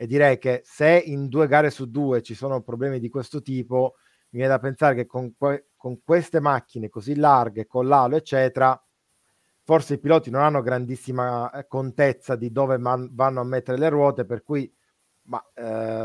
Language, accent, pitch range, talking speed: Italian, native, 125-165 Hz, 175 wpm